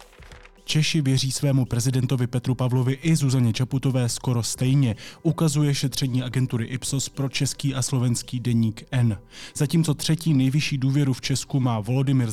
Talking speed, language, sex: 140 wpm, Czech, male